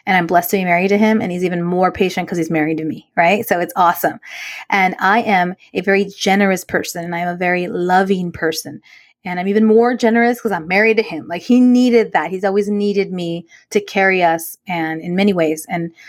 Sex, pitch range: female, 170-200 Hz